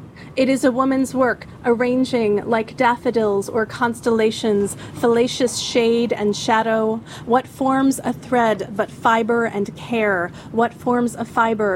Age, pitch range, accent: 30-49, 200-230 Hz, American